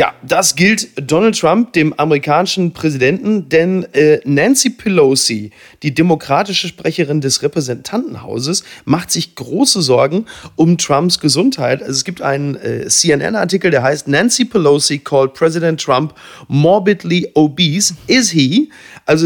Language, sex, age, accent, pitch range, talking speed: German, male, 40-59, German, 145-185 Hz, 130 wpm